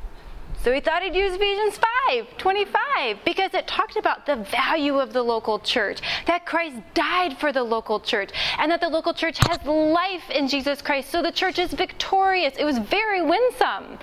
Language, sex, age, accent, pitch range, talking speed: English, female, 20-39, American, 225-345 Hz, 190 wpm